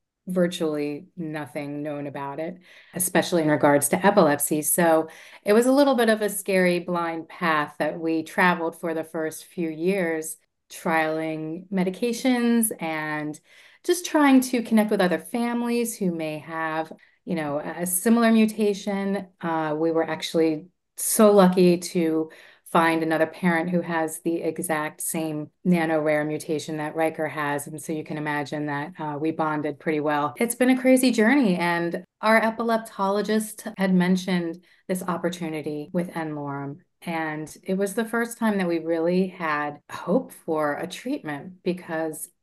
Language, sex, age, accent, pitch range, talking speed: English, female, 30-49, American, 155-190 Hz, 155 wpm